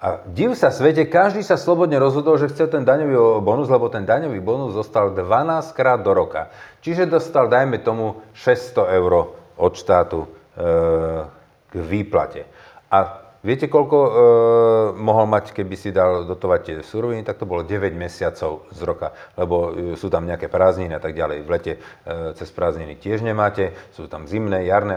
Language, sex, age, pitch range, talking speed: Slovak, male, 40-59, 100-160 Hz, 170 wpm